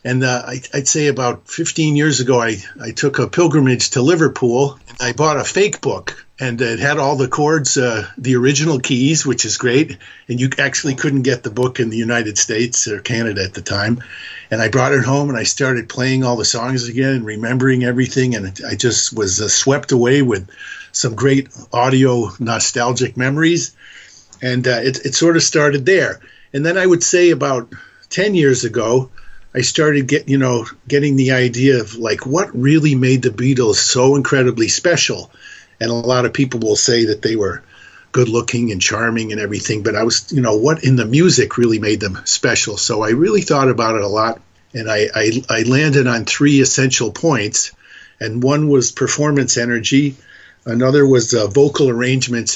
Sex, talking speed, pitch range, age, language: male, 195 wpm, 115-140 Hz, 50-69, English